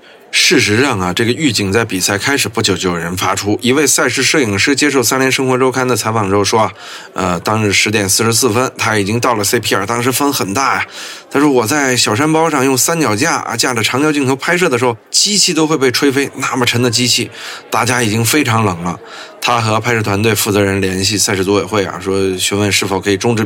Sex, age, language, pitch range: male, 20-39, Chinese, 100-140 Hz